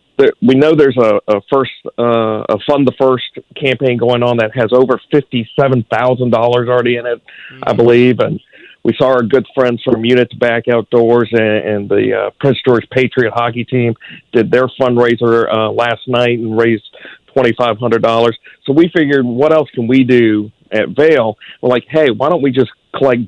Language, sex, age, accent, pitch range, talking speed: English, male, 50-69, American, 115-130 Hz, 180 wpm